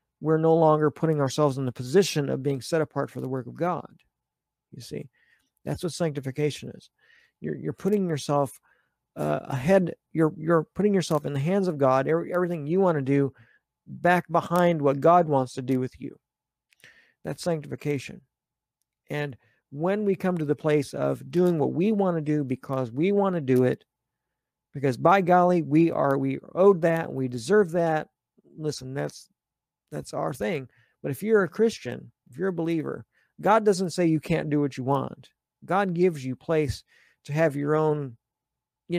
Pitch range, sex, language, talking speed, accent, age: 135-180 Hz, male, English, 180 wpm, American, 50-69